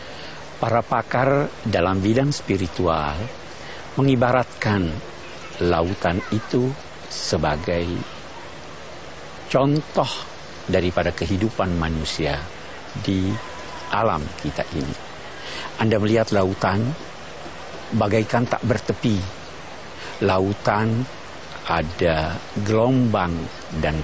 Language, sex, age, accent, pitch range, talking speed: Indonesian, male, 50-69, native, 80-115 Hz, 65 wpm